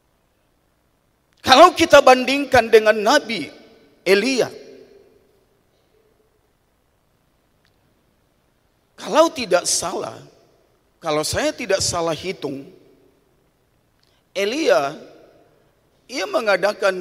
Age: 40-59